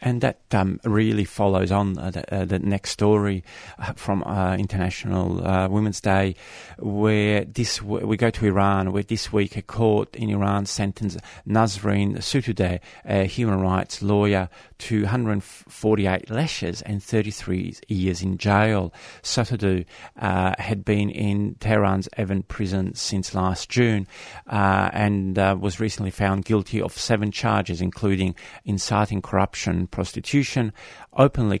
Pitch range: 95-110 Hz